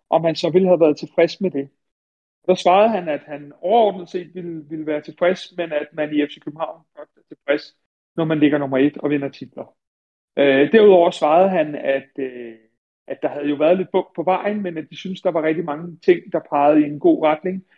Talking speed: 220 wpm